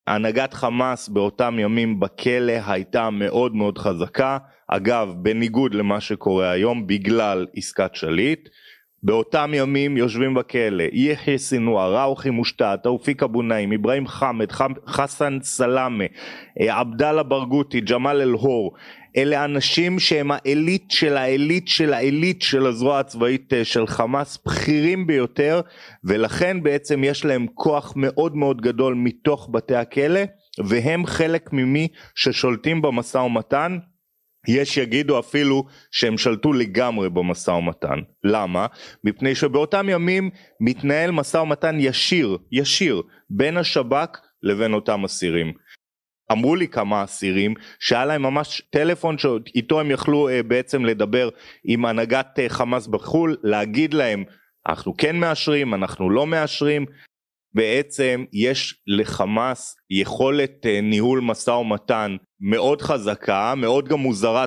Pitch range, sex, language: 115-145 Hz, male, Hebrew